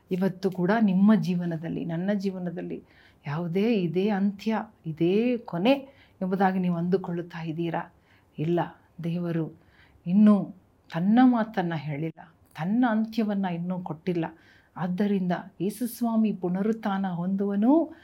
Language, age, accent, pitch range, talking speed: Kannada, 40-59, native, 170-215 Hz, 95 wpm